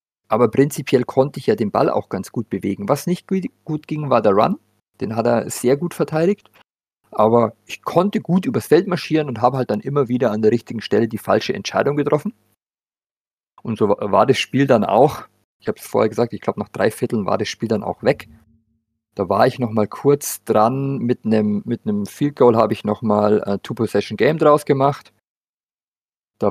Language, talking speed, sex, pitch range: German, 200 wpm, male, 105-135 Hz